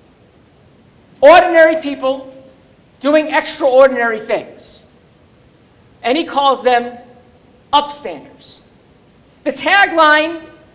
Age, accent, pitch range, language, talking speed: 50-69, American, 245-320 Hz, English, 65 wpm